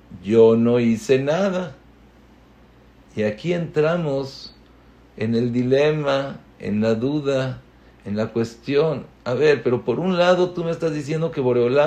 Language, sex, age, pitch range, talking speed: English, male, 50-69, 130-155 Hz, 140 wpm